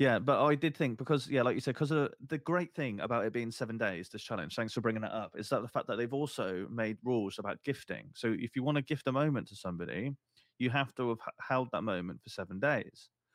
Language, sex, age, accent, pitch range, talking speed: English, male, 30-49, British, 110-130 Hz, 255 wpm